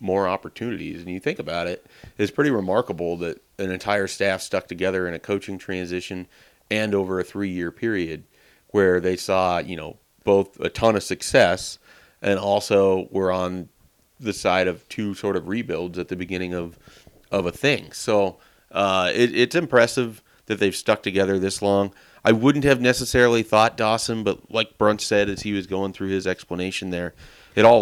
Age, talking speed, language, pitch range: 30-49, 180 wpm, English, 90-105 Hz